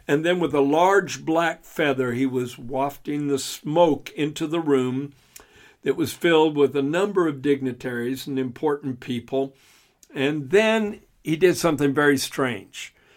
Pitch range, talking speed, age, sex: 135-170 Hz, 150 wpm, 60-79, male